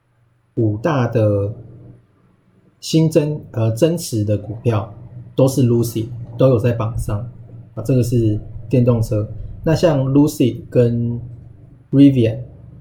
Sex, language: male, Chinese